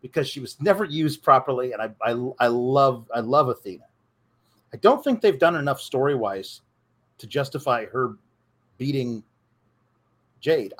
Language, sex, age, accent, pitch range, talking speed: English, male, 40-59, American, 120-170 Hz, 145 wpm